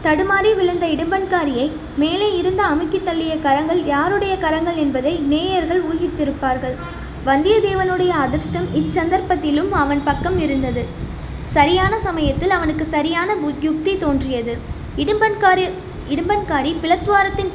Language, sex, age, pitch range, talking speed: Tamil, female, 20-39, 295-370 Hz, 95 wpm